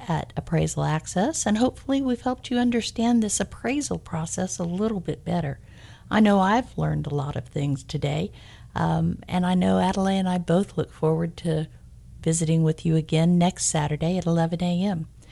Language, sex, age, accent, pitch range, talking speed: English, female, 50-69, American, 165-220 Hz, 175 wpm